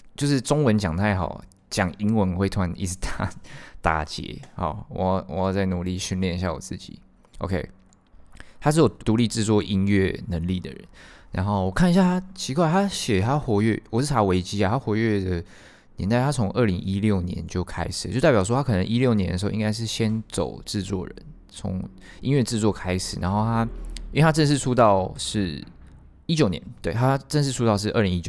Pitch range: 90-115 Hz